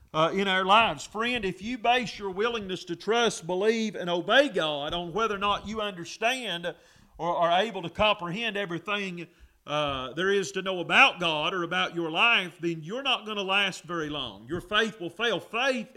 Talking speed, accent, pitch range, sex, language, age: 195 wpm, American, 170-215 Hz, male, English, 40-59